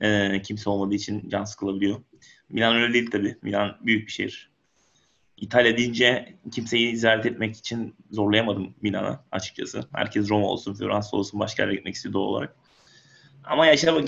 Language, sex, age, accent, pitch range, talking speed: Turkish, male, 30-49, native, 100-115 Hz, 145 wpm